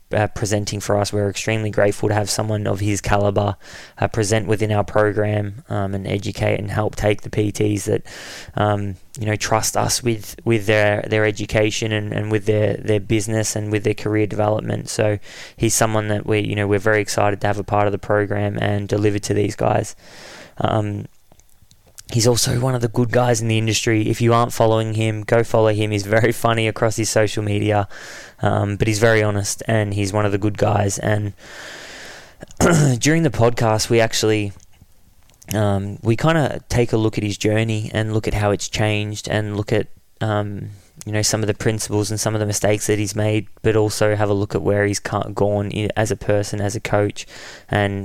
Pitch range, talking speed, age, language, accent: 105-110 Hz, 205 wpm, 20-39, English, Australian